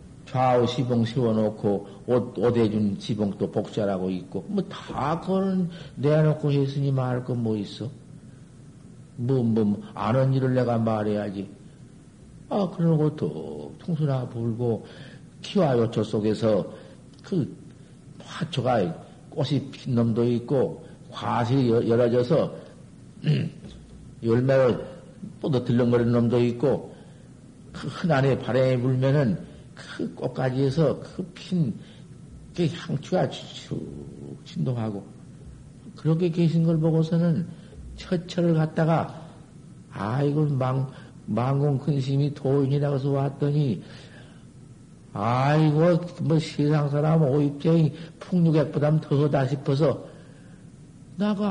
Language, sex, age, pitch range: Korean, male, 50-69, 120-160 Hz